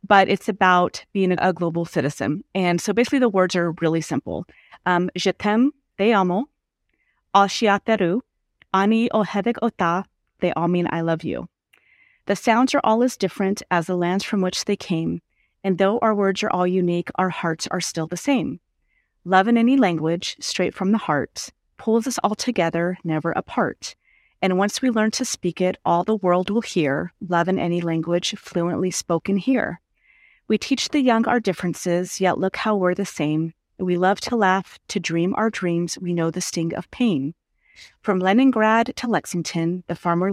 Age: 30-49